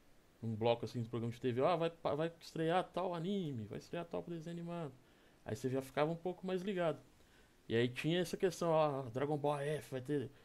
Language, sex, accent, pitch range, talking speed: Portuguese, male, Brazilian, 120-155 Hz, 210 wpm